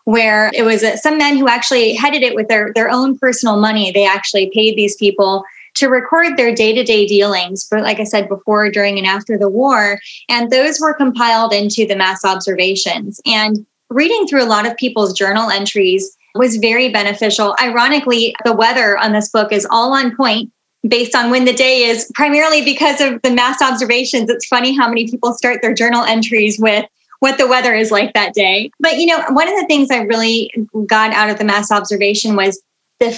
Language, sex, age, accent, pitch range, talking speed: English, female, 20-39, American, 215-275 Hz, 200 wpm